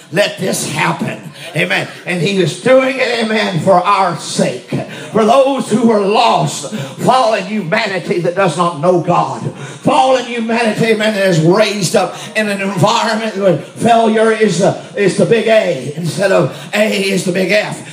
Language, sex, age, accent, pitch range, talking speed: English, male, 50-69, American, 195-260 Hz, 165 wpm